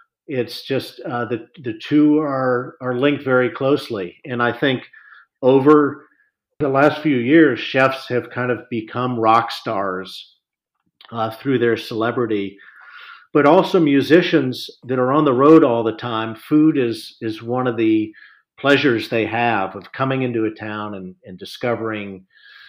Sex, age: male, 50-69